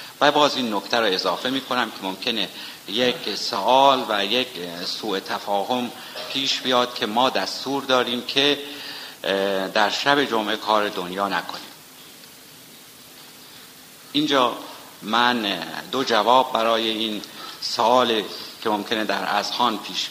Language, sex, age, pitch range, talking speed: Persian, male, 50-69, 105-140 Hz, 120 wpm